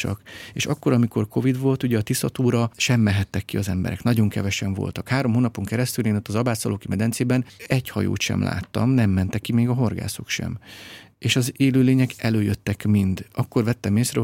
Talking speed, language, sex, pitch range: 185 wpm, Hungarian, male, 105-125 Hz